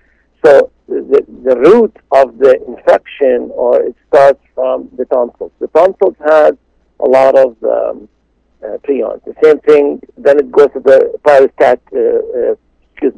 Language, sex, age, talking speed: English, male, 60-79, 155 wpm